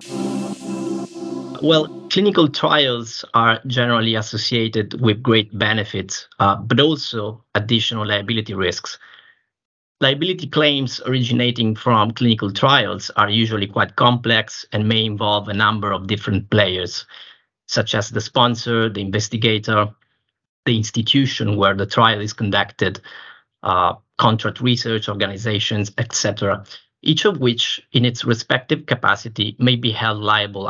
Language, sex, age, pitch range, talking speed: English, male, 30-49, 105-120 Hz, 120 wpm